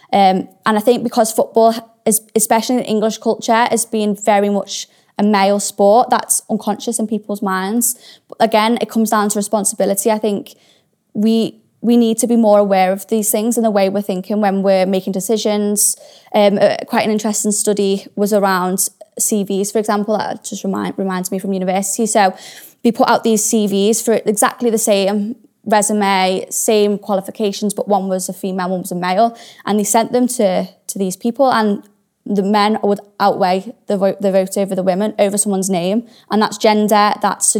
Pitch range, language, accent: 195-225 Hz, English, British